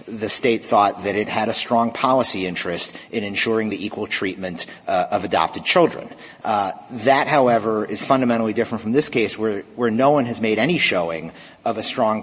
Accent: American